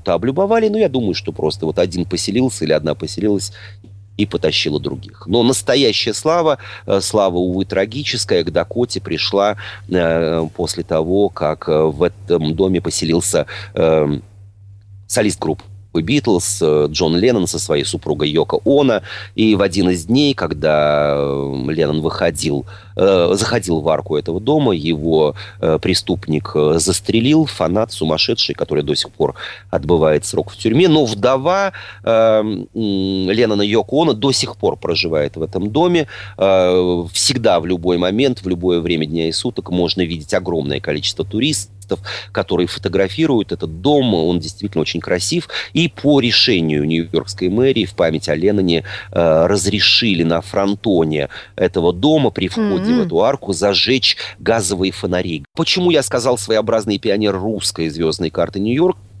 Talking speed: 145 wpm